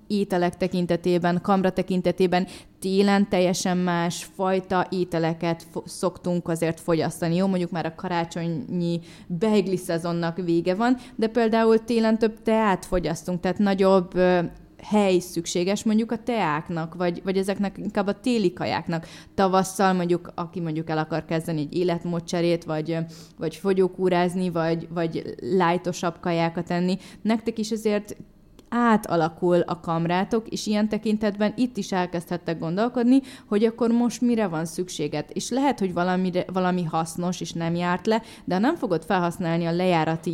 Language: Hungarian